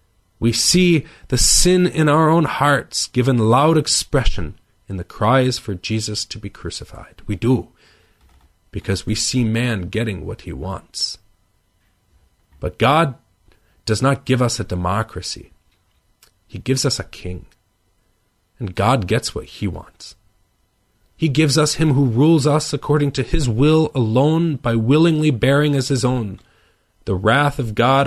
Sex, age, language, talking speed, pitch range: male, 40-59, English, 150 wpm, 95-135 Hz